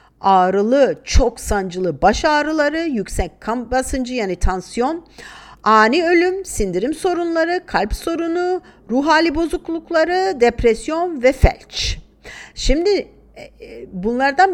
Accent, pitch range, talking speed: native, 205-290 Hz, 100 wpm